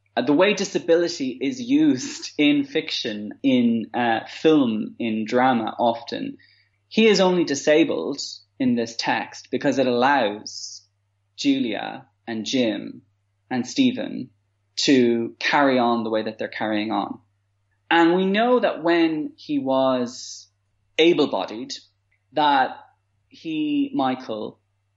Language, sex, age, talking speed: English, male, 20-39, 115 wpm